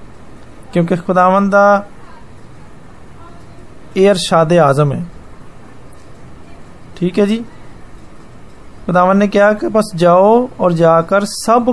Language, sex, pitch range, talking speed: Hindi, male, 165-225 Hz, 85 wpm